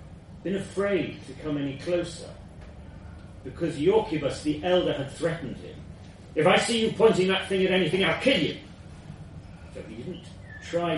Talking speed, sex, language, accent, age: 160 wpm, male, English, British, 40-59